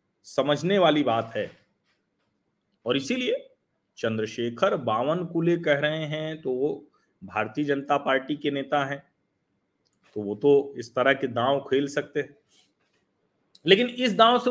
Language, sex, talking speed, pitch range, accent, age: Hindi, male, 140 wpm, 130-180 Hz, native, 40-59